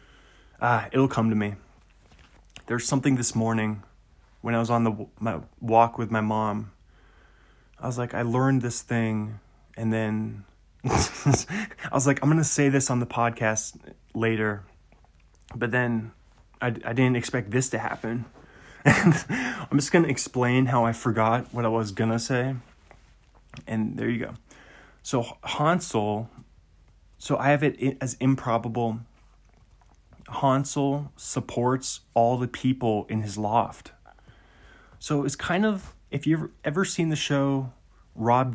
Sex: male